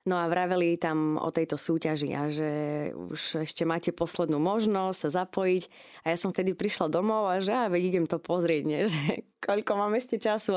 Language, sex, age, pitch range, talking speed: Slovak, female, 20-39, 170-205 Hz, 195 wpm